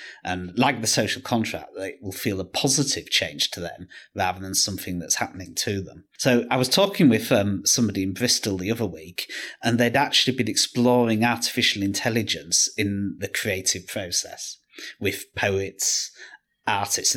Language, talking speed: English, 160 wpm